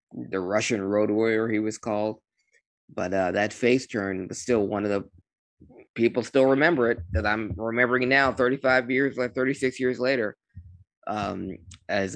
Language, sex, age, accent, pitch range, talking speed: English, male, 20-39, American, 100-125 Hz, 165 wpm